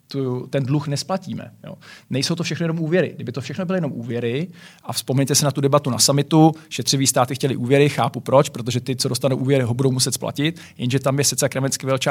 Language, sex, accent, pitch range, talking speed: Czech, male, native, 130-150 Hz, 220 wpm